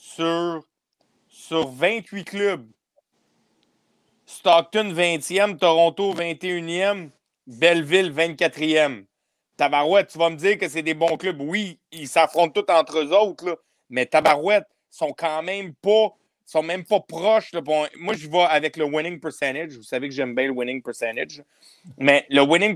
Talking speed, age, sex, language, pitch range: 150 wpm, 40-59, male, French, 155-205 Hz